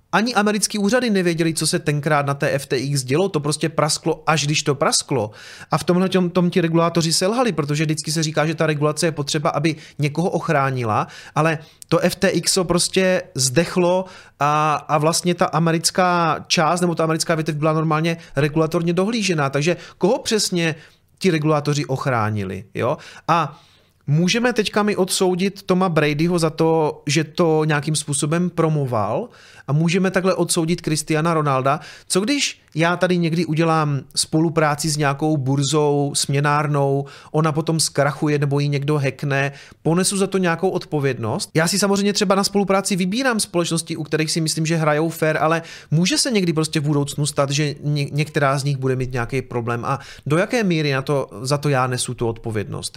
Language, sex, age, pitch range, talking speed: Czech, male, 30-49, 145-175 Hz, 170 wpm